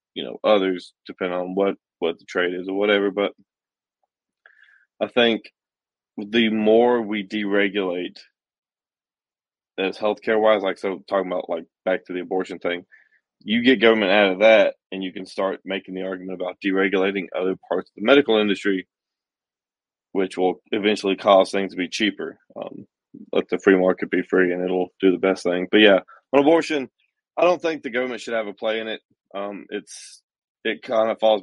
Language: English